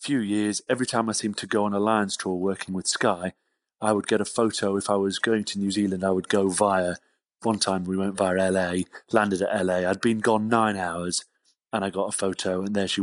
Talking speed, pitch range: 245 wpm, 95-110 Hz